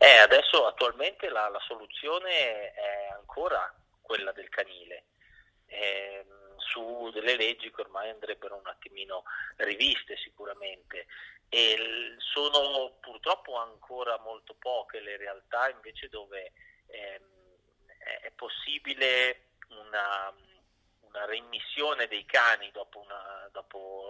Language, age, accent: Italian, 30-49, native